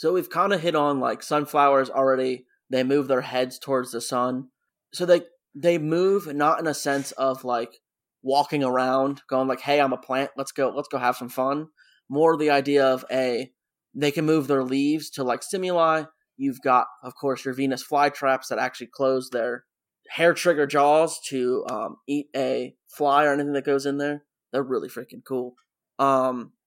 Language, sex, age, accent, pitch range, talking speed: English, male, 20-39, American, 130-150 Hz, 190 wpm